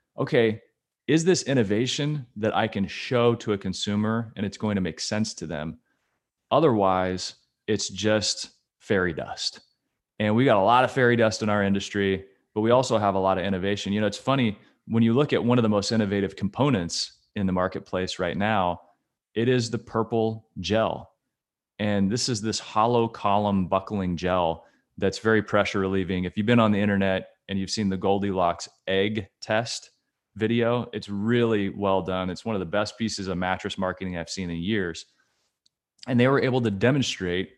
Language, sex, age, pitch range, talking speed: English, male, 30-49, 95-115 Hz, 185 wpm